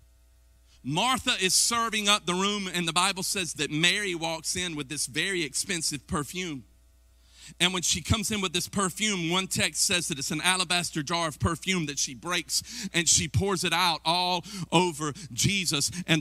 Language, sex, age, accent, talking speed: English, male, 40-59, American, 180 wpm